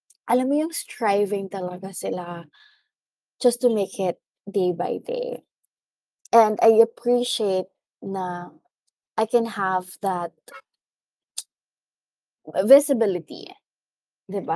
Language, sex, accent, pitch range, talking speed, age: English, female, Filipino, 185-245 Hz, 95 wpm, 20-39